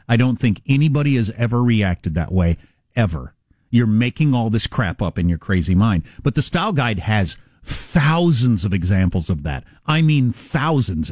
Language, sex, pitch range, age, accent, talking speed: English, male, 100-155 Hz, 50-69, American, 180 wpm